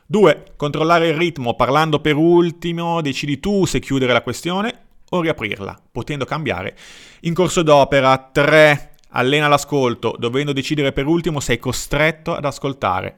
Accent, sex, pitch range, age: native, male, 120-160 Hz, 30-49